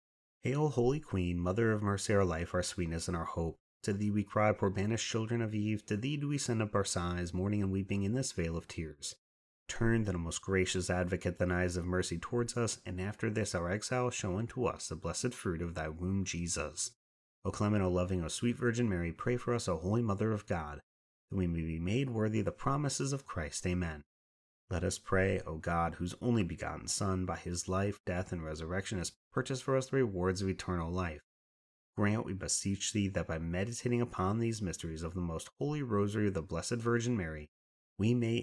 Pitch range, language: 85-110 Hz, English